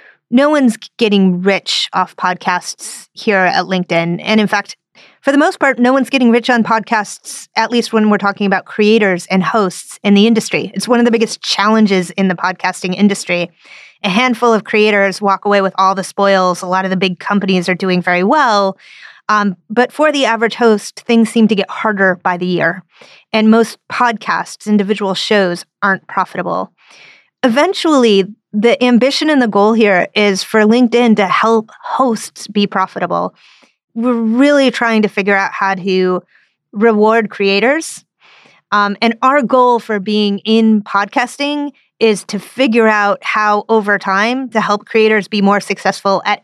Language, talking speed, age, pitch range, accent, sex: English, 170 wpm, 30-49, 195-235 Hz, American, female